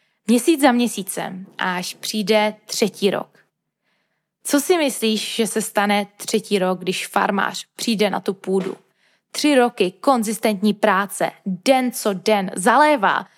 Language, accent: Czech, native